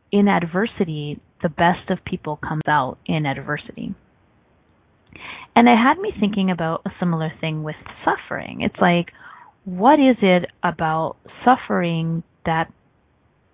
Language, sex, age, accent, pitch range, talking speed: English, female, 30-49, American, 160-205 Hz, 130 wpm